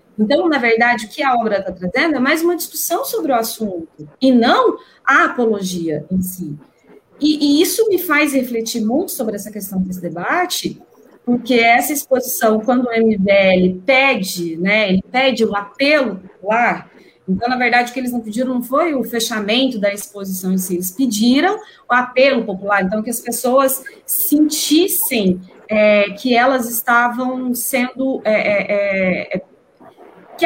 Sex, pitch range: female, 210-295 Hz